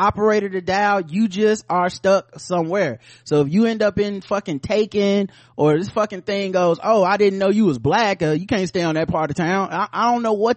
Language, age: English, 30-49